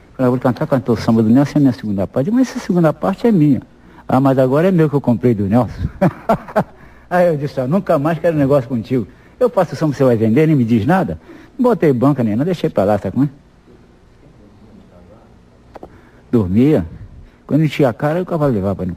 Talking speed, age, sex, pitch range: 220 wpm, 60-79, male, 90-145 Hz